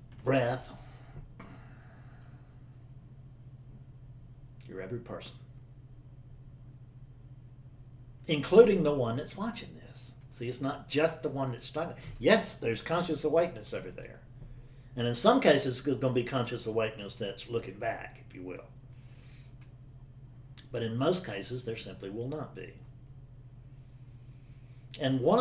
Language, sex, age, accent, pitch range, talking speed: English, male, 60-79, American, 125-150 Hz, 120 wpm